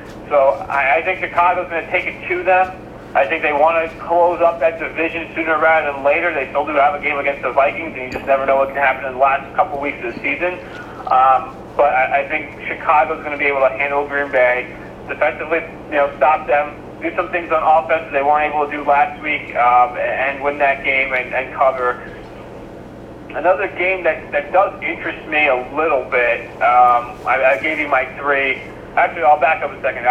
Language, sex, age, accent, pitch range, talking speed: English, male, 40-59, American, 140-165 Hz, 220 wpm